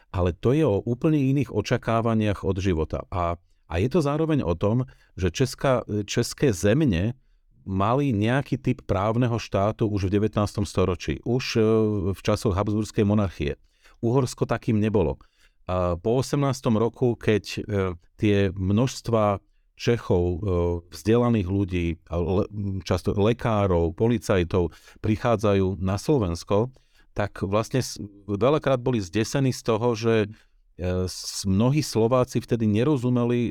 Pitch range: 100-125 Hz